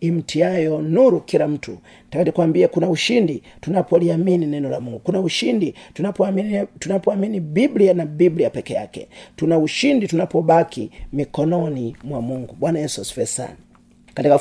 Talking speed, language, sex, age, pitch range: 120 wpm, Swahili, male, 40-59, 155-195 Hz